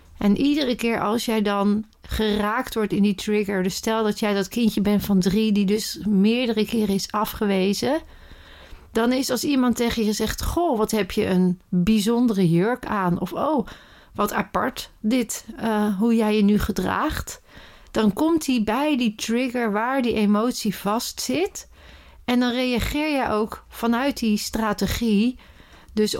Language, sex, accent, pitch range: Dutch, female, Dutch, 190-225 Hz